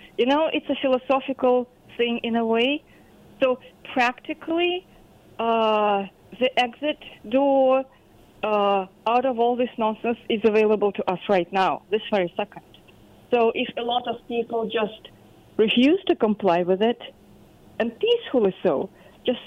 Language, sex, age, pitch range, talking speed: English, female, 40-59, 200-255 Hz, 140 wpm